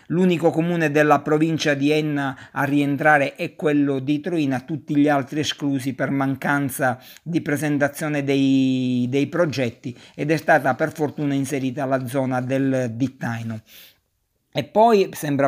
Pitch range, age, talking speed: 135-160 Hz, 50-69, 140 wpm